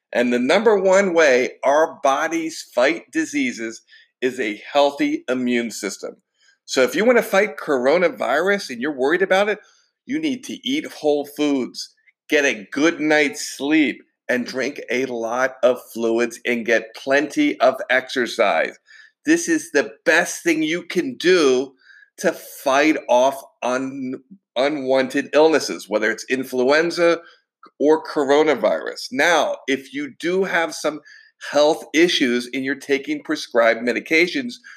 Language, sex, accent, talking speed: English, male, American, 135 wpm